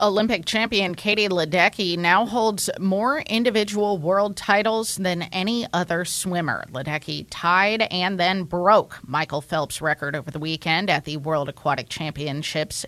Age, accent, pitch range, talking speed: 30-49, American, 140-185 Hz, 140 wpm